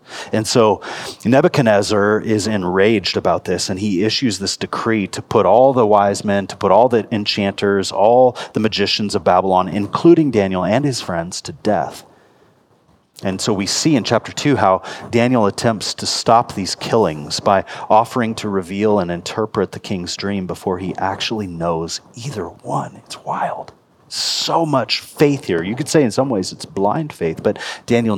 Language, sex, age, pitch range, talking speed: English, male, 30-49, 95-115 Hz, 175 wpm